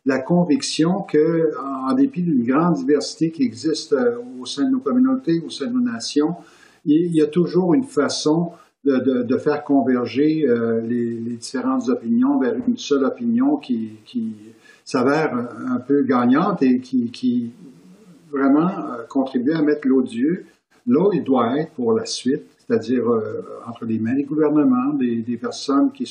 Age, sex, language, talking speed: 50-69, male, French, 175 wpm